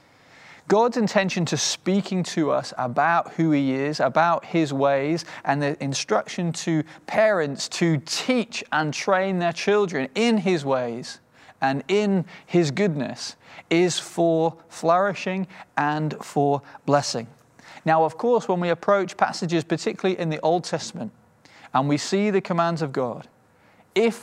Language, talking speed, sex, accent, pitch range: English, 140 wpm, male, British, 155-195 Hz